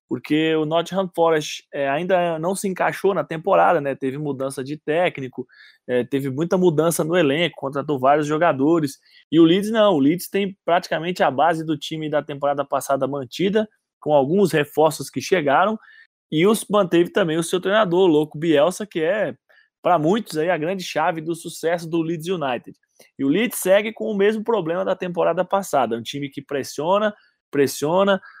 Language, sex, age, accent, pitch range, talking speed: Portuguese, male, 20-39, Brazilian, 150-195 Hz, 175 wpm